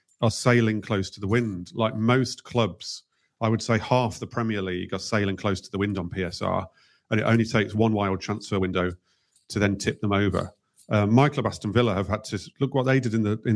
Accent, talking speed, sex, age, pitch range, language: British, 225 wpm, male, 40-59, 100-120 Hz, English